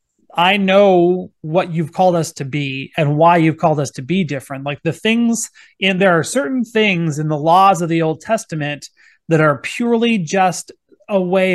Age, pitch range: 30-49, 150-190 Hz